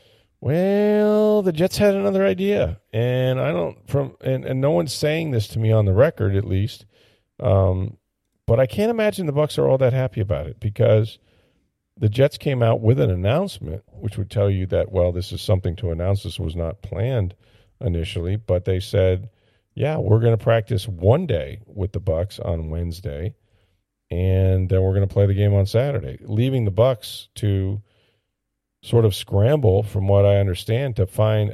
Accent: American